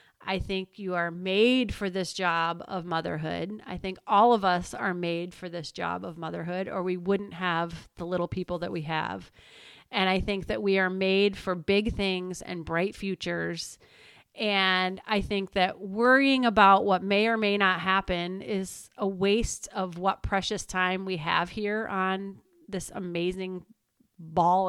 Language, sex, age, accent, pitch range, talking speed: English, female, 30-49, American, 180-210 Hz, 175 wpm